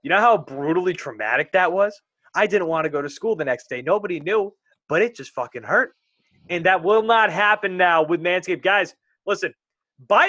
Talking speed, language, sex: 205 wpm, English, male